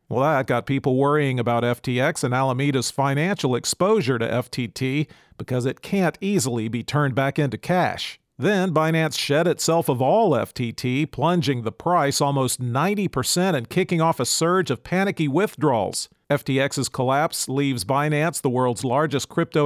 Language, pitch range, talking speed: English, 130-165 Hz, 155 wpm